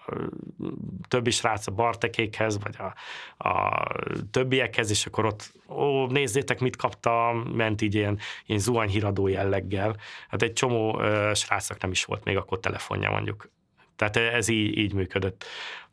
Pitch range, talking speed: 100-115 Hz, 140 wpm